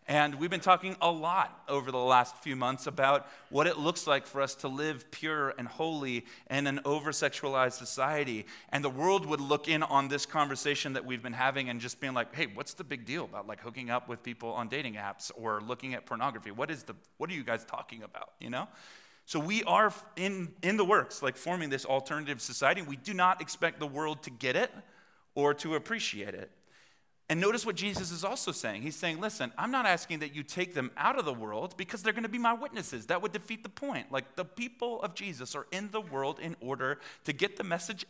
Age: 30-49